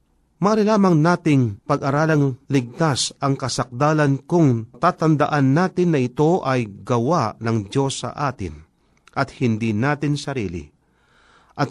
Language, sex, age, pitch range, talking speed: Filipino, male, 40-59, 115-160 Hz, 115 wpm